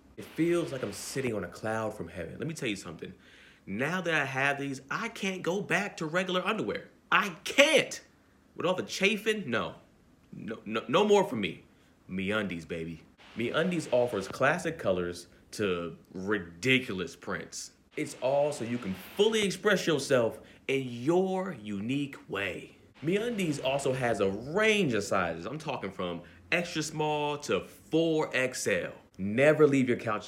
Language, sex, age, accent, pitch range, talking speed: English, male, 30-49, American, 95-160 Hz, 160 wpm